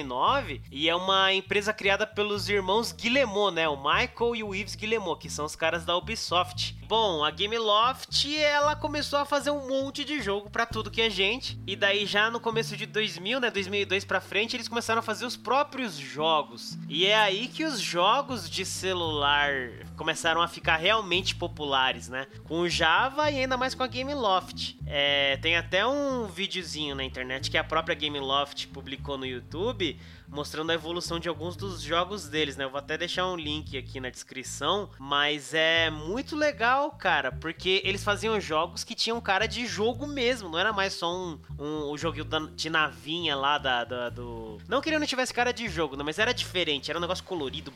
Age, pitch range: 20-39, 145-220 Hz